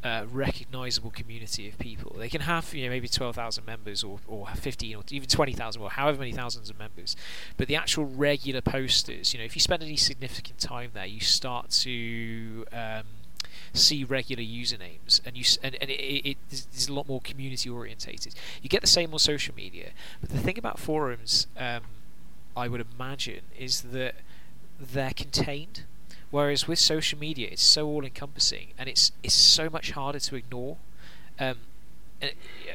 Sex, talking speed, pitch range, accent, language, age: male, 180 wpm, 115-140 Hz, British, English, 20-39